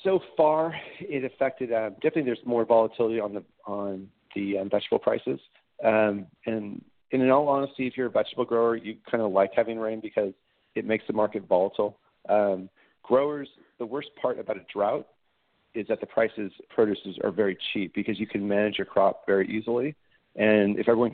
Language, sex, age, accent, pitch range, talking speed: English, male, 40-59, American, 100-125 Hz, 185 wpm